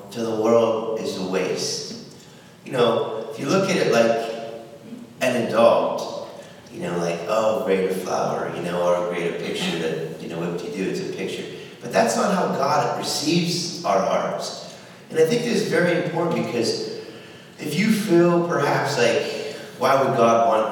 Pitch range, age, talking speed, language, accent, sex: 95-160 Hz, 30-49, 185 wpm, English, American, male